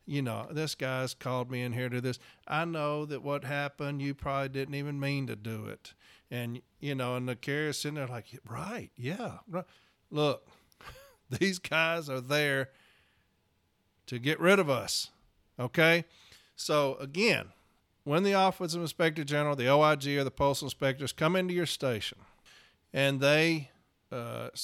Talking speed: 170 wpm